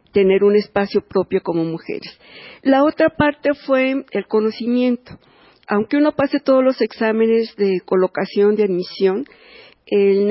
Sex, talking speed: female, 135 wpm